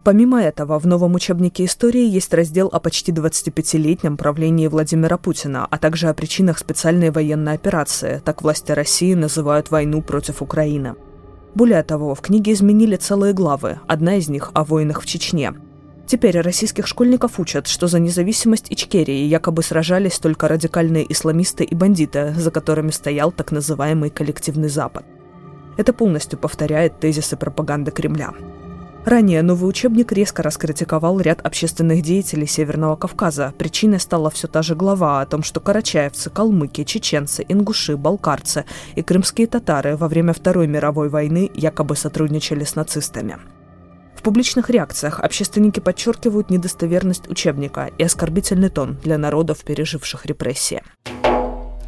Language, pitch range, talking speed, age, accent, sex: Russian, 150-185 Hz, 140 wpm, 20-39, native, female